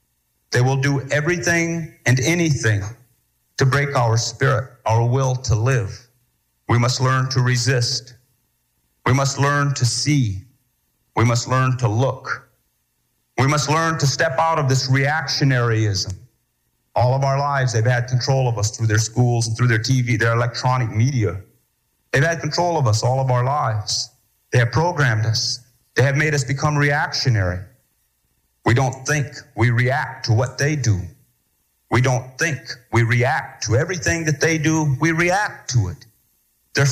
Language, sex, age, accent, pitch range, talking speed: English, male, 40-59, American, 120-145 Hz, 165 wpm